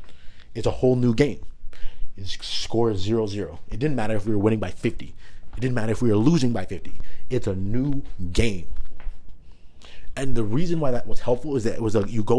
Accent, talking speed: American, 230 wpm